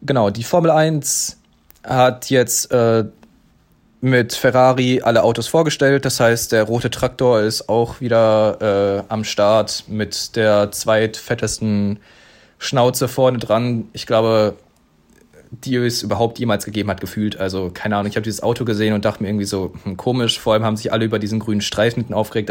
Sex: male